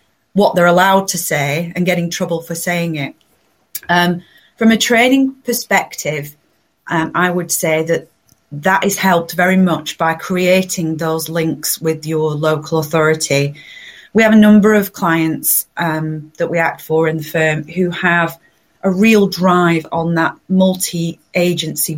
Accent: British